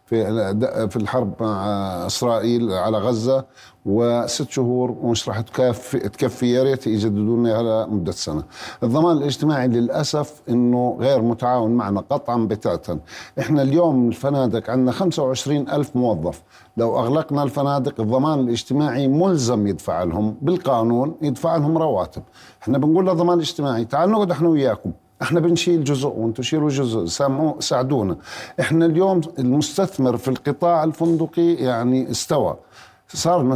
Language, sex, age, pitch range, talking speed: Arabic, male, 50-69, 120-150 Hz, 130 wpm